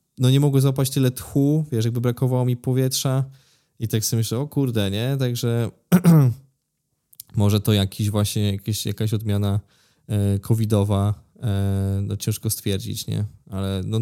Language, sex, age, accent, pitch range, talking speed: Polish, male, 20-39, native, 105-125 Hz, 135 wpm